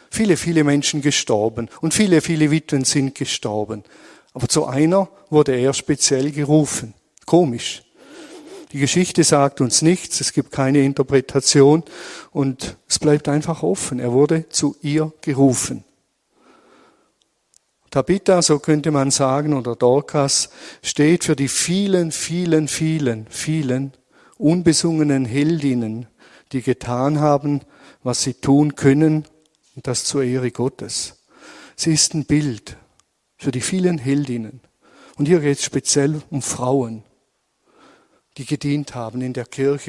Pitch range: 125-155 Hz